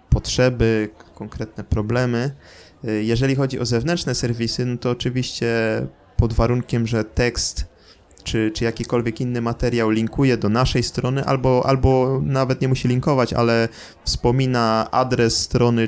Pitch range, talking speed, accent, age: 110-125 Hz, 125 wpm, native, 20-39